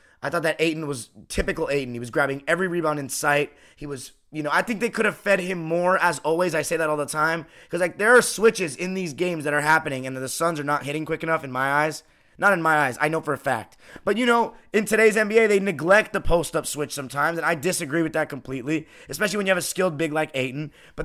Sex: male